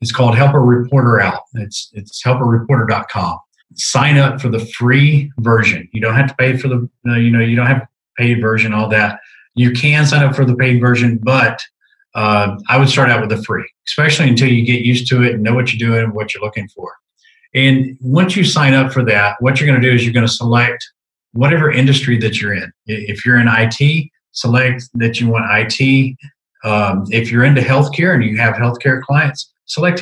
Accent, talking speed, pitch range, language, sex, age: American, 215 wpm, 115-135 Hz, English, male, 40-59